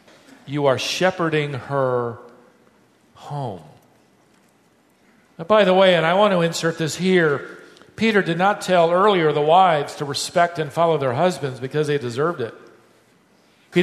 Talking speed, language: 145 wpm, English